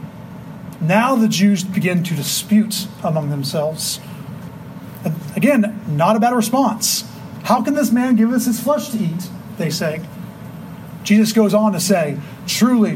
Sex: male